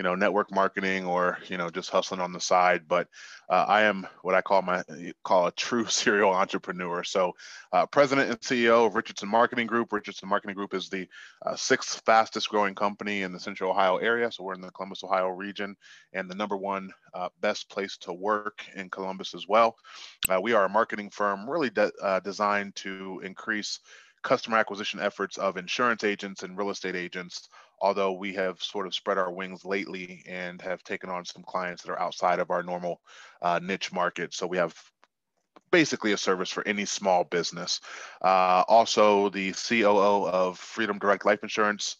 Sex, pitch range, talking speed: male, 90-105 Hz, 190 wpm